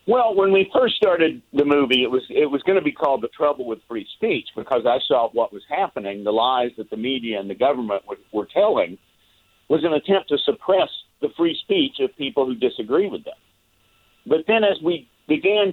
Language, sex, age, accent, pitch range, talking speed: English, male, 50-69, American, 125-190 Hz, 215 wpm